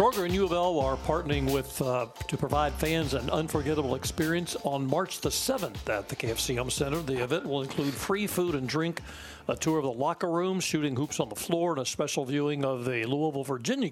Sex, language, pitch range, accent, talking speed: male, English, 120-155 Hz, American, 205 wpm